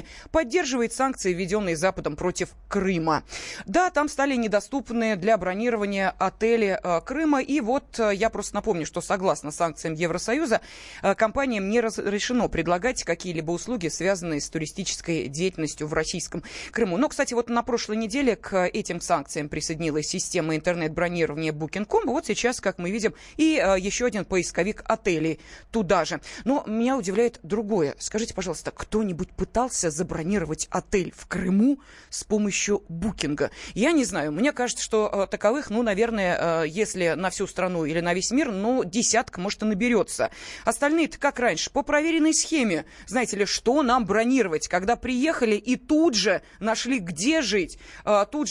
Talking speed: 150 wpm